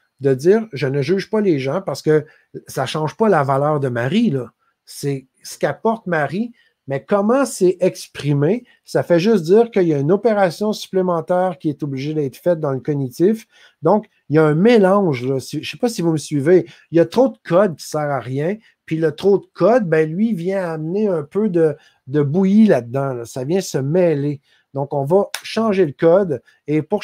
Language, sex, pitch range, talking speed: French, male, 145-195 Hz, 220 wpm